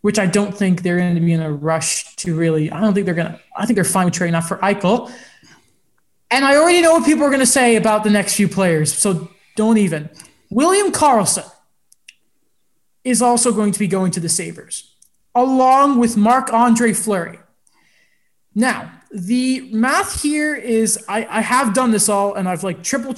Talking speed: 195 wpm